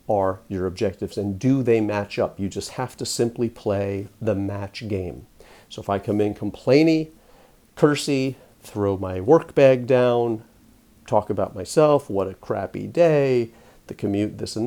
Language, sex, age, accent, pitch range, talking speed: English, male, 40-59, American, 100-125 Hz, 165 wpm